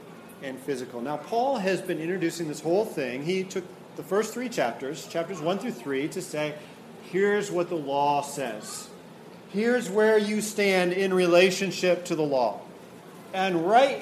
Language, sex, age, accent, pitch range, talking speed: English, male, 40-59, American, 155-210 Hz, 165 wpm